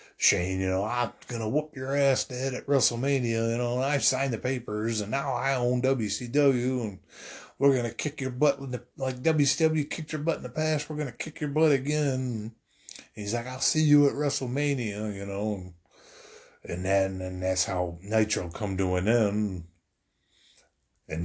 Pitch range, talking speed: 95-125 Hz, 190 wpm